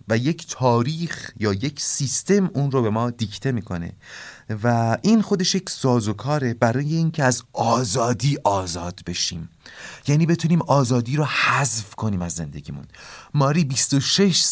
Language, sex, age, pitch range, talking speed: Persian, male, 30-49, 105-170 Hz, 135 wpm